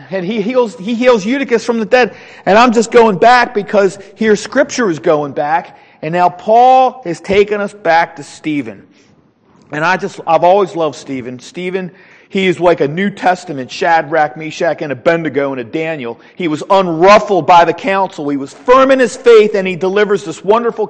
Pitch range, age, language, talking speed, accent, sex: 165-230 Hz, 40-59, English, 180 wpm, American, male